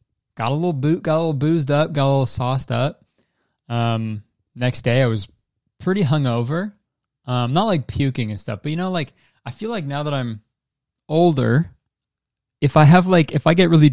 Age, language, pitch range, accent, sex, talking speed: 20-39, English, 115-145 Hz, American, male, 185 wpm